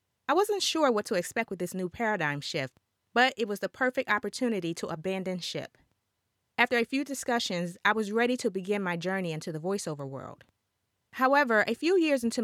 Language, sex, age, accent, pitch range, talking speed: English, female, 30-49, American, 165-235 Hz, 195 wpm